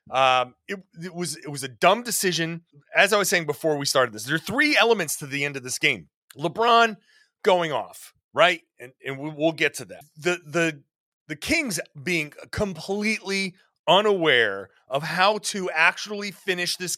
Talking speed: 175 wpm